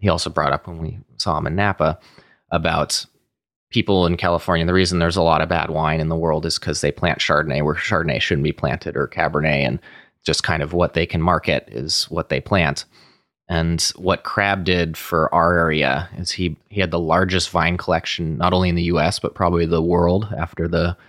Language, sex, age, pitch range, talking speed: English, male, 20-39, 80-90 Hz, 215 wpm